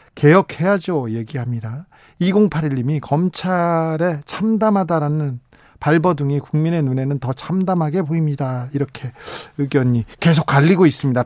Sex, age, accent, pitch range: male, 40-59, native, 140-175 Hz